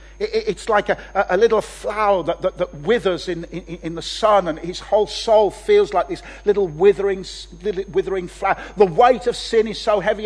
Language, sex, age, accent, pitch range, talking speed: English, male, 50-69, British, 170-255 Hz, 195 wpm